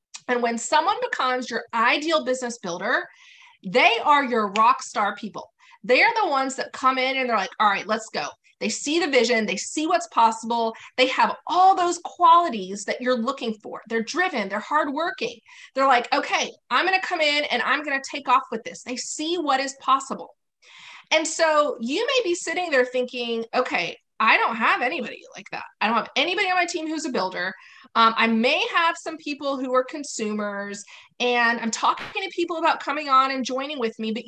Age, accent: 30-49, American